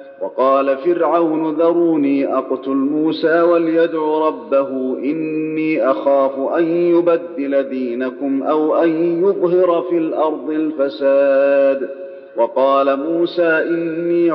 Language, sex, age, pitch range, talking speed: Arabic, male, 40-59, 140-170 Hz, 90 wpm